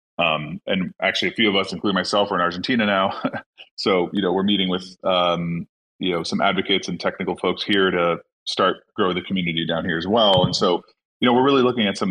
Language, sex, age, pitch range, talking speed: English, male, 30-49, 90-110 Hz, 230 wpm